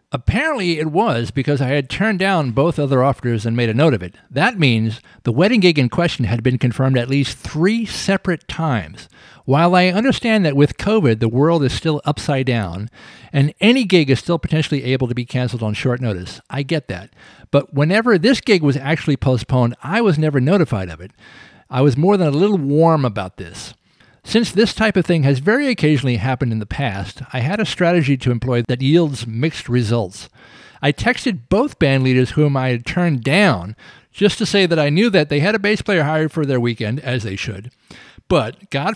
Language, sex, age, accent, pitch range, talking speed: English, male, 50-69, American, 125-175 Hz, 210 wpm